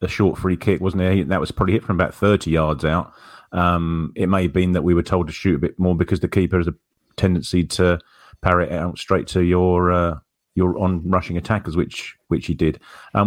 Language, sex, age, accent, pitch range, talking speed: English, male, 30-49, British, 90-105 Hz, 225 wpm